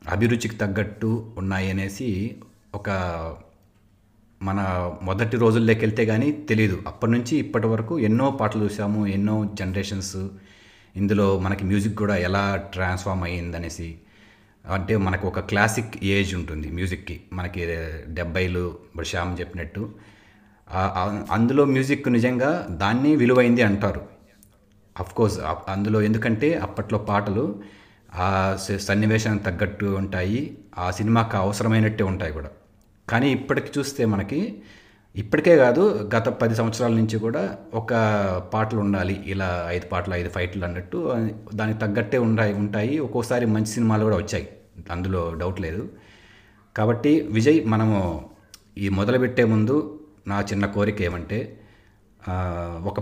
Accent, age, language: native, 30-49, Telugu